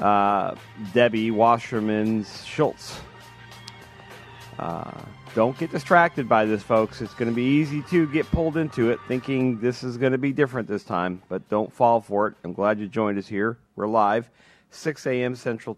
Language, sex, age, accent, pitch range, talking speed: English, male, 40-59, American, 105-130 Hz, 175 wpm